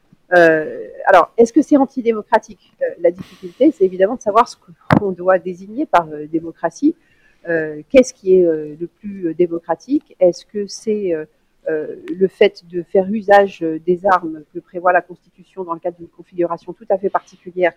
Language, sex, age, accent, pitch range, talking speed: French, female, 50-69, French, 170-210 Hz, 180 wpm